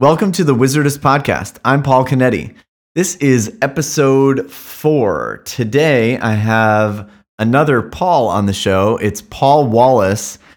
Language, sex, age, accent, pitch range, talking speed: English, male, 30-49, American, 105-135 Hz, 130 wpm